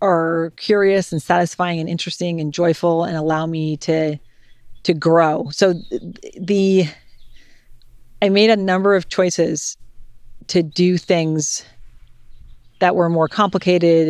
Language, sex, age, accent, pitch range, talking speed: English, female, 40-59, American, 155-180 Hz, 125 wpm